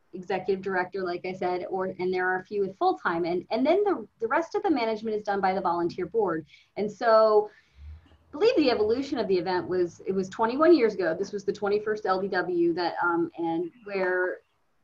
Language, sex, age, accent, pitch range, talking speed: English, female, 30-49, American, 180-235 Hz, 210 wpm